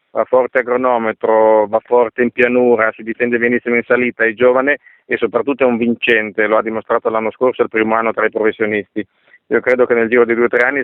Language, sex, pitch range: Italian, male, 110-125 Hz